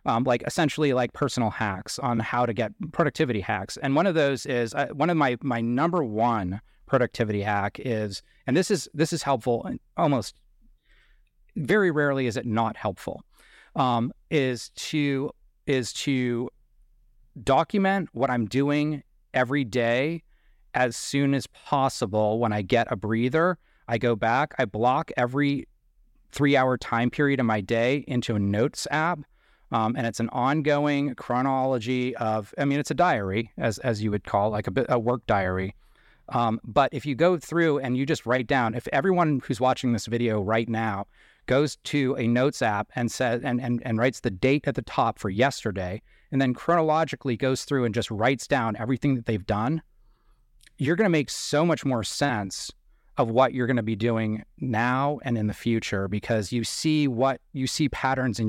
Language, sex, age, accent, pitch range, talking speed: English, male, 30-49, American, 115-140 Hz, 180 wpm